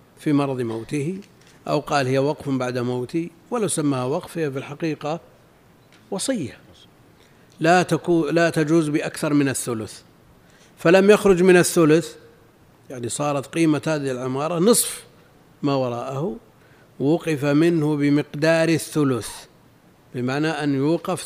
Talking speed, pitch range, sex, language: 115 wpm, 135-165 Hz, male, Arabic